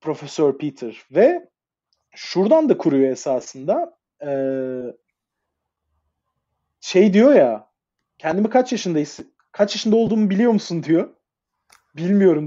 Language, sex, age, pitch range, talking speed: Turkish, male, 40-59, 135-205 Hz, 105 wpm